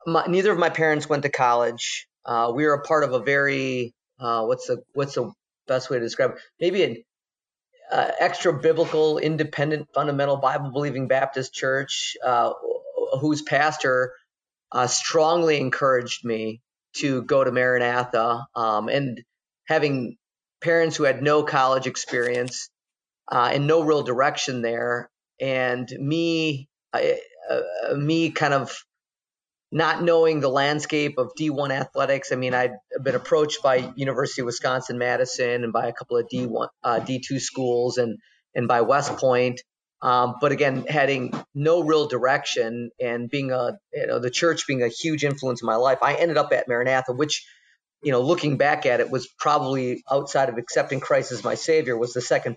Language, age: English, 30-49